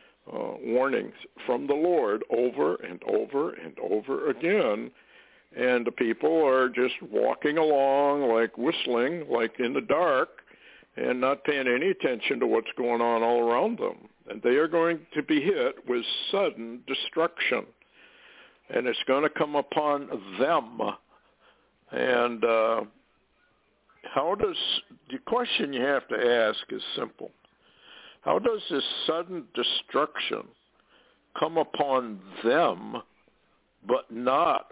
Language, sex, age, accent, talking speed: English, male, 60-79, American, 130 wpm